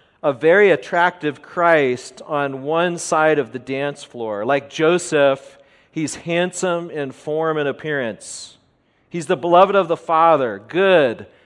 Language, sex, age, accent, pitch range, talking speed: English, male, 40-59, American, 145-190 Hz, 135 wpm